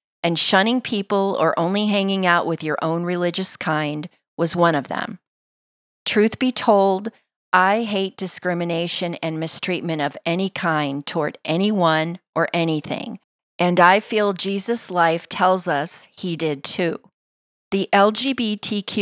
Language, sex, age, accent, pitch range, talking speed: English, female, 40-59, American, 160-190 Hz, 135 wpm